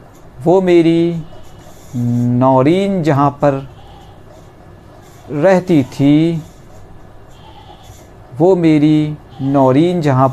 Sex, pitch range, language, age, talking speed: male, 125-170 Hz, Hindi, 60-79, 65 wpm